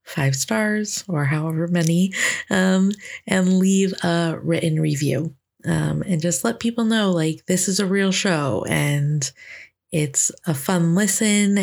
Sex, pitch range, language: female, 160-190 Hz, English